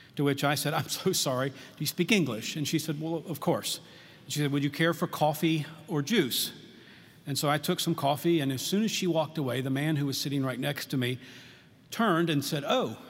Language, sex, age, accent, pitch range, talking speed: English, male, 40-59, American, 140-165 Hz, 240 wpm